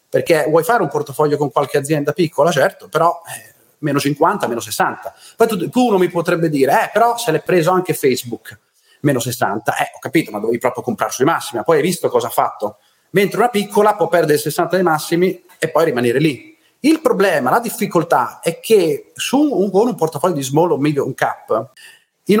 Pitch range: 155-235 Hz